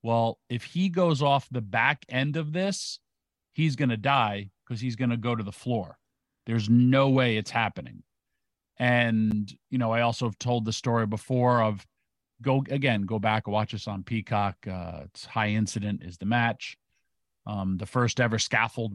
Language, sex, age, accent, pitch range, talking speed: English, male, 40-59, American, 105-130 Hz, 185 wpm